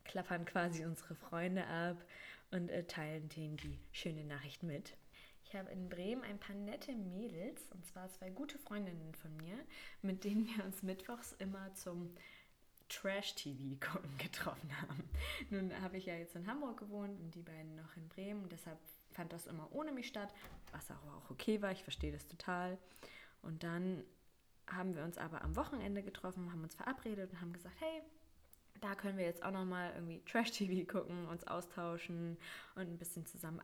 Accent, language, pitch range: German, German, 170-200 Hz